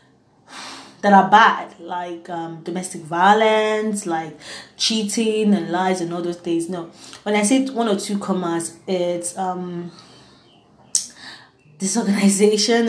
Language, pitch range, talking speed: English, 175-210 Hz, 115 wpm